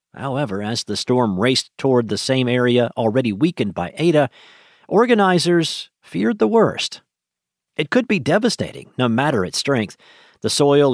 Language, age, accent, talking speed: English, 50-69, American, 150 wpm